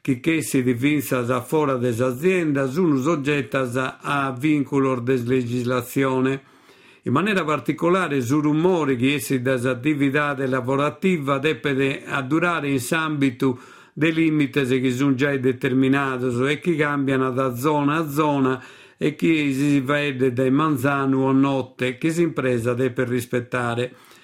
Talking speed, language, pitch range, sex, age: 130 wpm, Italian, 130-150 Hz, male, 50-69